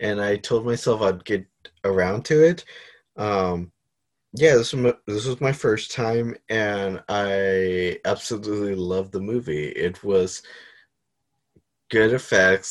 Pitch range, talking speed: 95-120 Hz, 135 wpm